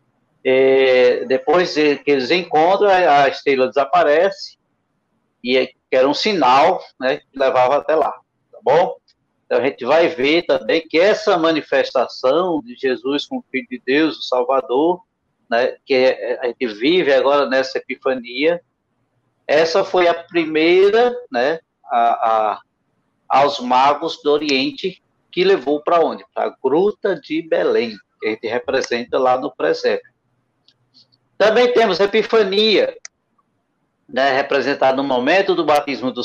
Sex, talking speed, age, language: male, 140 wpm, 60-79, Portuguese